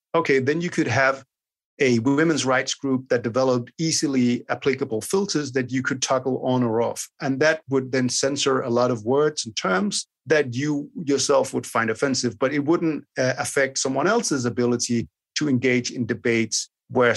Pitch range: 120-145 Hz